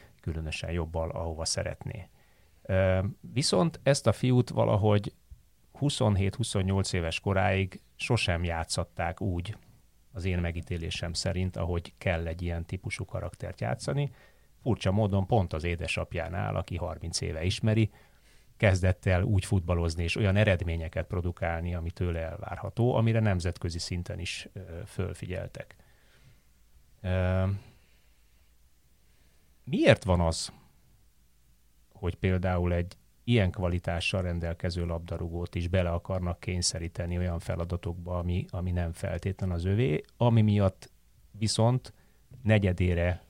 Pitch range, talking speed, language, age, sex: 85-105 Hz, 105 wpm, Hungarian, 30-49, male